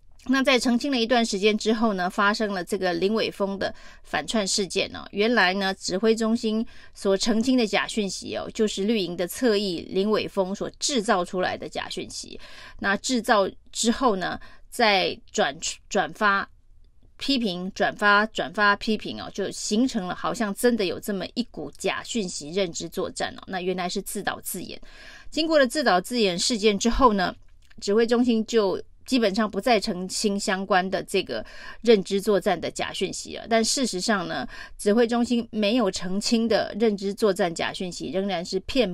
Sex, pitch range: female, 190-230 Hz